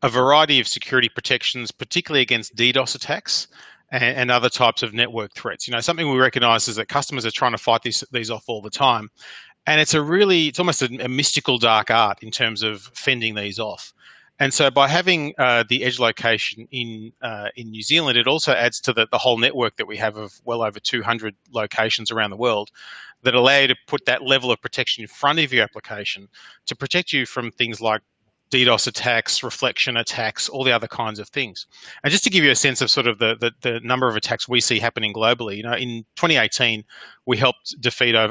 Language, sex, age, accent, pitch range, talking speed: English, male, 30-49, Australian, 115-130 Hz, 215 wpm